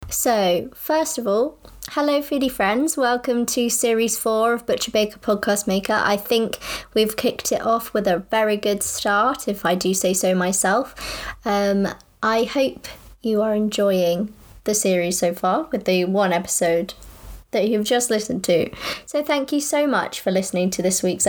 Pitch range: 200-250 Hz